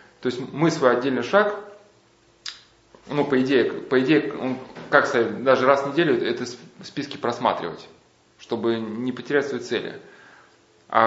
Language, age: Russian, 20-39